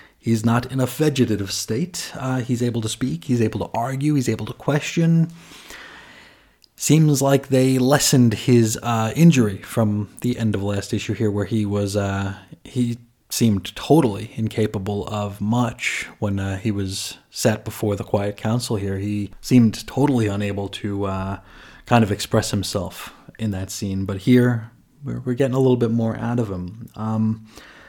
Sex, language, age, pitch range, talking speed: male, English, 30-49, 105-135 Hz, 170 wpm